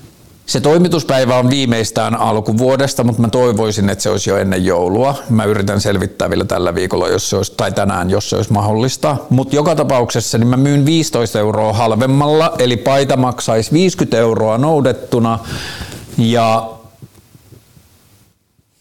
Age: 50-69